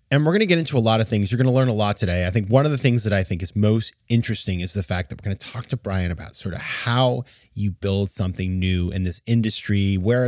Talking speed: 300 wpm